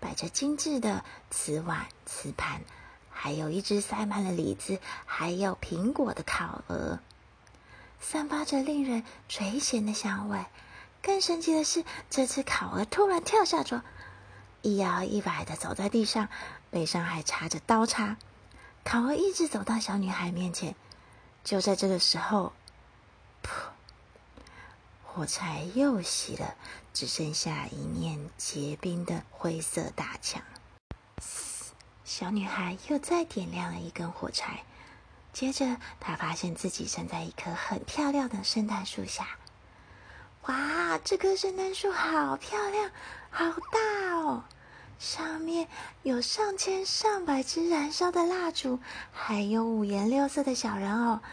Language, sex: Chinese, female